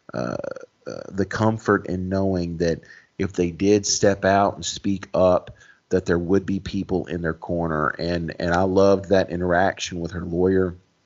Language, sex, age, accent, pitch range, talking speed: English, male, 40-59, American, 90-105 Hz, 170 wpm